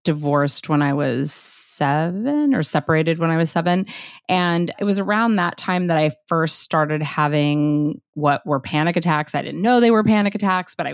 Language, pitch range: English, 150-180 Hz